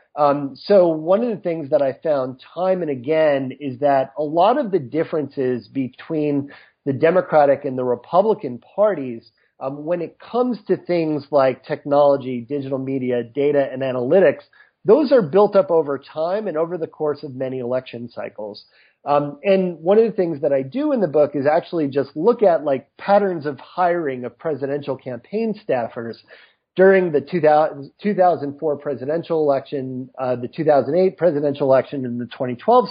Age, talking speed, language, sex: 40-59, 170 wpm, English, male